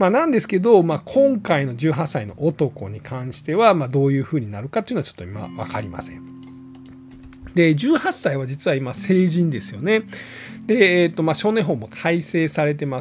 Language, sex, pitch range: Japanese, male, 125-180 Hz